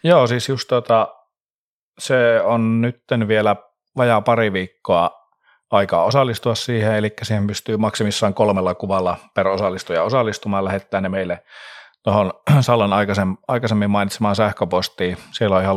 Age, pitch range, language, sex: 30-49, 95-110 Hz, Finnish, male